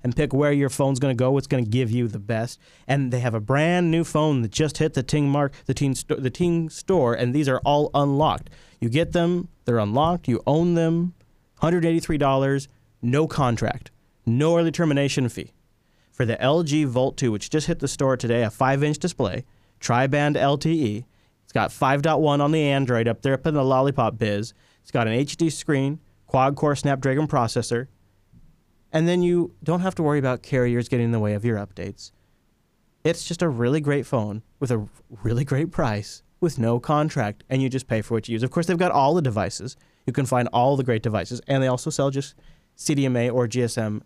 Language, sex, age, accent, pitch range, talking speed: English, male, 30-49, American, 120-155 Hz, 200 wpm